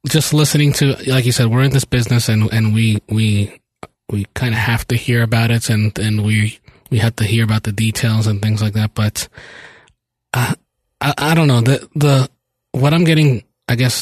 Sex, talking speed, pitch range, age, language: male, 210 wpm, 110-130 Hz, 20-39, English